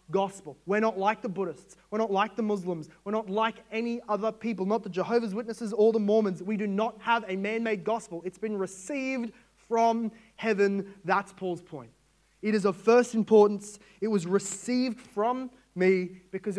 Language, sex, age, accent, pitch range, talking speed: English, male, 30-49, Australian, 185-225 Hz, 180 wpm